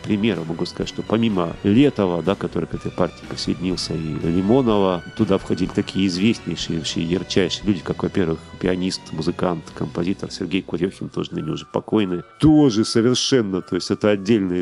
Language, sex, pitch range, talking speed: Russian, male, 90-110 Hz, 160 wpm